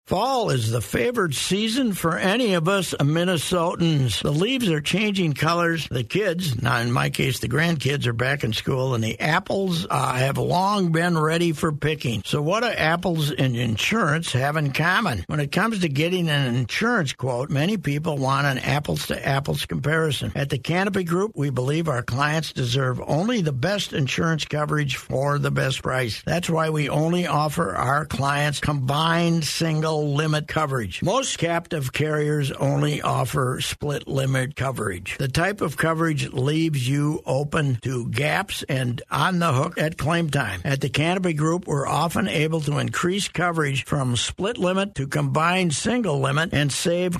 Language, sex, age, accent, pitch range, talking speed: English, male, 60-79, American, 140-175 Hz, 170 wpm